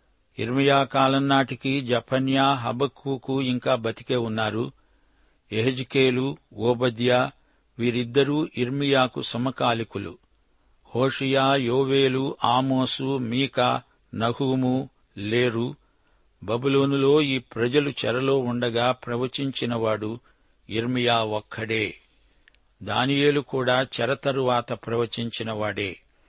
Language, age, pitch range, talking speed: Telugu, 60-79, 115-135 Hz, 70 wpm